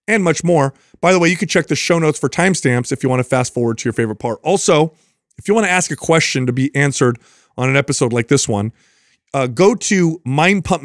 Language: English